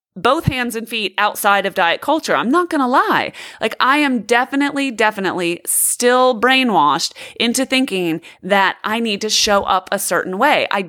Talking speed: 175 wpm